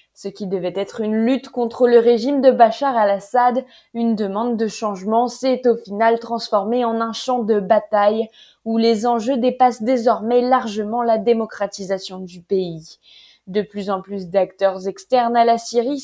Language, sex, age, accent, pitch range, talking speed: French, female, 20-39, French, 195-245 Hz, 165 wpm